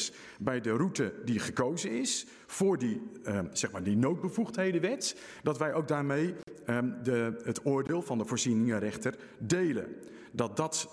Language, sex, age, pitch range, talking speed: Dutch, male, 50-69, 140-210 Hz, 125 wpm